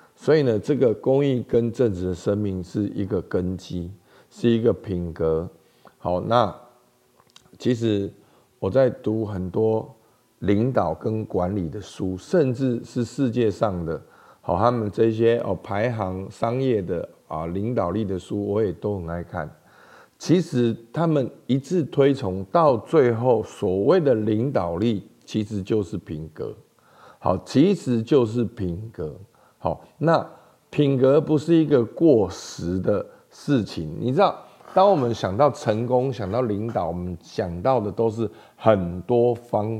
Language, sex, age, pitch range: Chinese, male, 50-69, 95-125 Hz